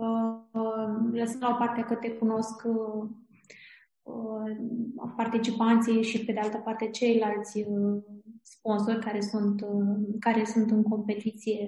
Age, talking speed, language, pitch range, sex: 20-39, 110 wpm, Romanian, 220-240 Hz, female